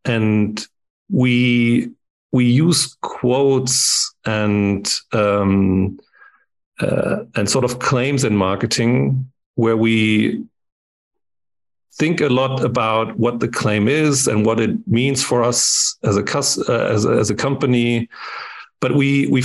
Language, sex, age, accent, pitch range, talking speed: English, male, 40-59, German, 110-130 Hz, 125 wpm